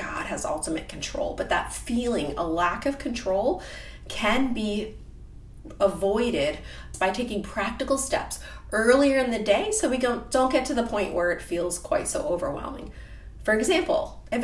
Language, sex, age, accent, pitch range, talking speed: English, female, 30-49, American, 185-280 Hz, 160 wpm